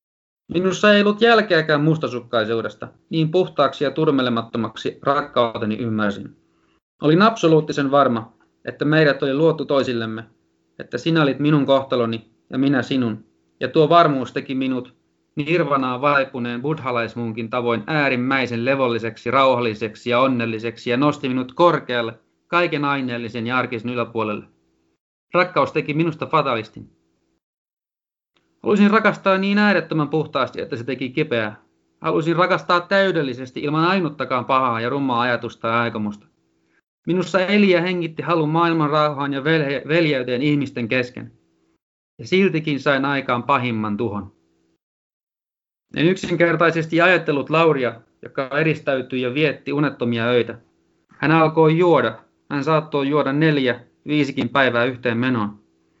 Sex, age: male, 30-49